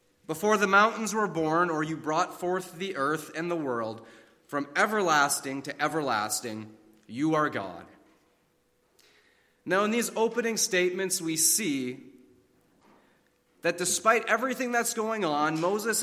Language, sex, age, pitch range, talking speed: English, male, 30-49, 140-195 Hz, 130 wpm